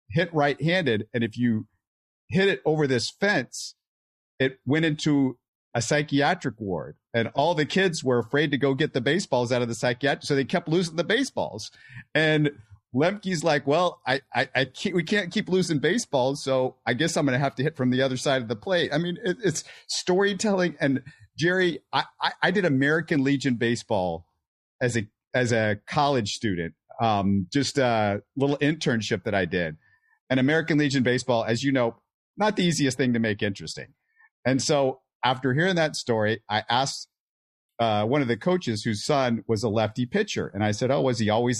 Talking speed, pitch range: 190 wpm, 115-150 Hz